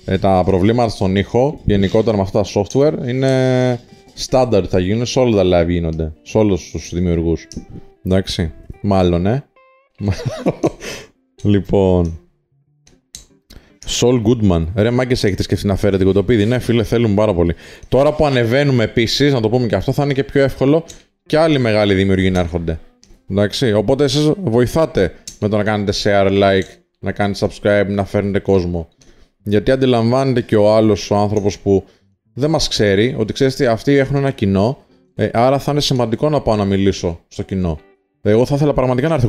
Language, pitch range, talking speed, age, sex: Greek, 95-125 Hz, 170 wpm, 20-39, male